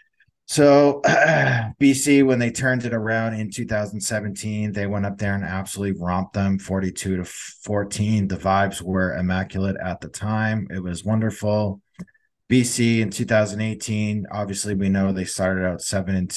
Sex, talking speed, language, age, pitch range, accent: male, 155 wpm, English, 20-39, 90-105 Hz, American